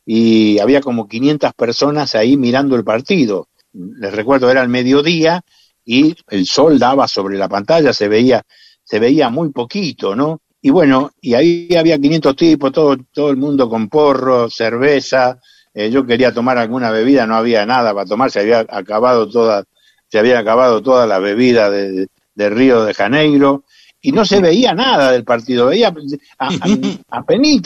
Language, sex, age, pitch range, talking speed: Spanish, male, 60-79, 115-150 Hz, 165 wpm